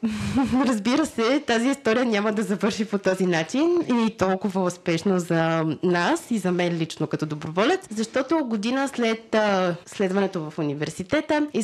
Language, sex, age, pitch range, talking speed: Bulgarian, female, 20-39, 175-230 Hz, 145 wpm